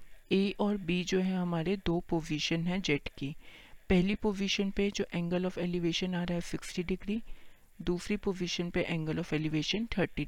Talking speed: 175 wpm